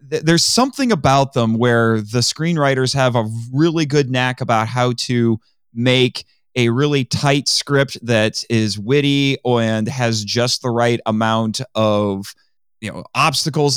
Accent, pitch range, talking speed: American, 120-160 Hz, 145 wpm